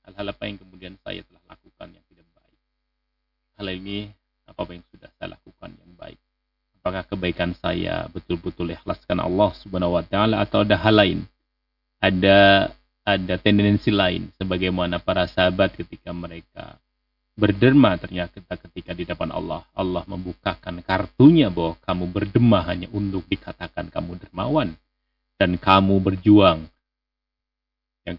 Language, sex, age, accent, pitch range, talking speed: Indonesian, male, 30-49, native, 85-105 Hz, 130 wpm